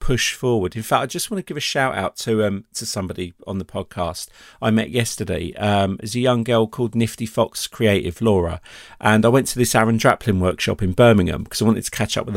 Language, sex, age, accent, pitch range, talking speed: English, male, 40-59, British, 100-120 Hz, 245 wpm